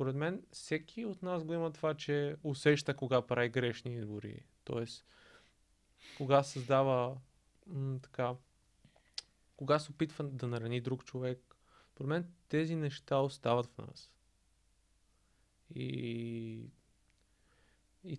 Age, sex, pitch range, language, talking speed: 20-39, male, 120-140 Hz, Bulgarian, 115 wpm